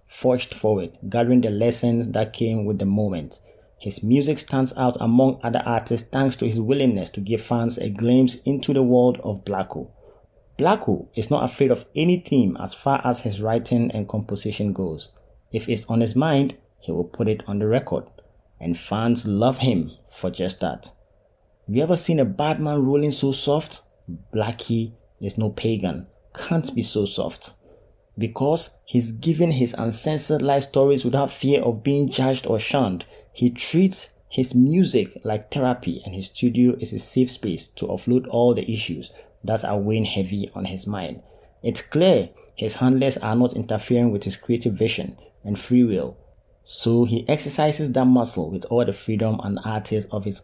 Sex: male